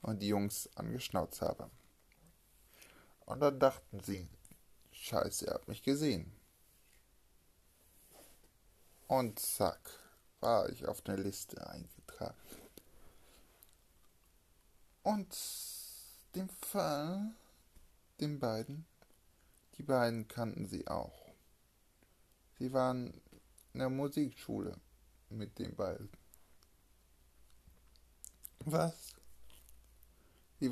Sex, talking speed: male, 80 wpm